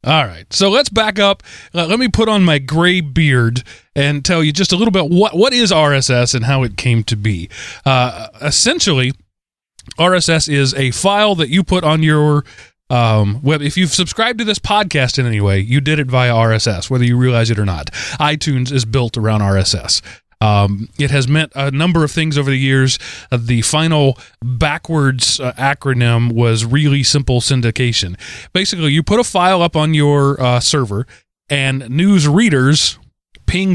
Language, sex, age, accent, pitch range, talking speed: English, male, 30-49, American, 120-160 Hz, 185 wpm